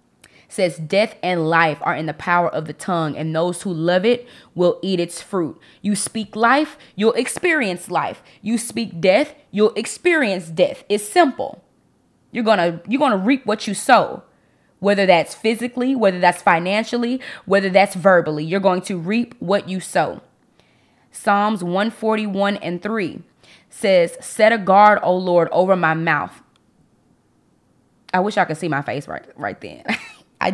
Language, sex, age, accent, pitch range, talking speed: English, female, 20-39, American, 170-220 Hz, 160 wpm